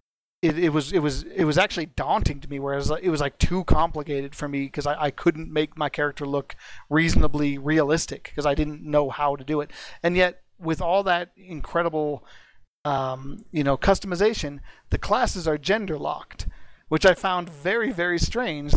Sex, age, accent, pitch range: male, 40-59, American, 140-160 Hz